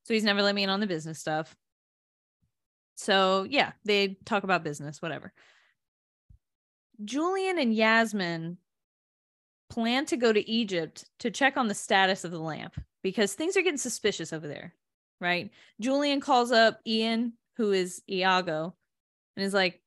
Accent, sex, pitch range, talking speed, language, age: American, female, 190-275 Hz, 155 wpm, English, 20-39